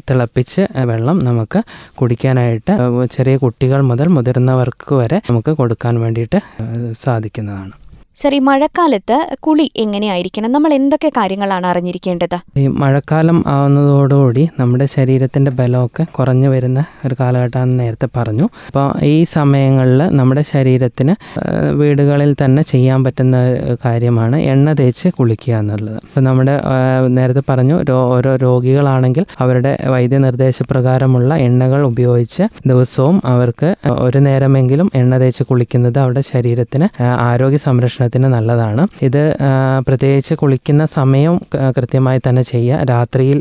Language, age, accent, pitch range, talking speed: Malayalam, 20-39, native, 125-145 Hz, 105 wpm